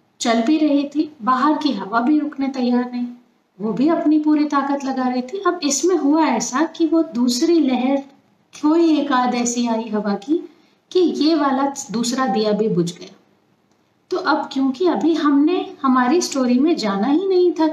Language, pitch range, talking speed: Hindi, 235-315 Hz, 180 wpm